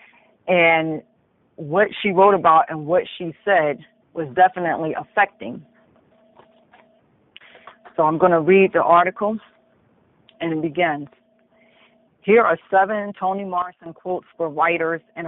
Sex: female